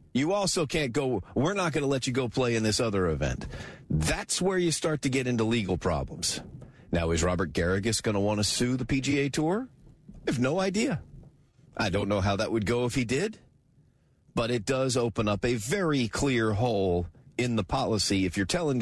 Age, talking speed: 40-59, 210 wpm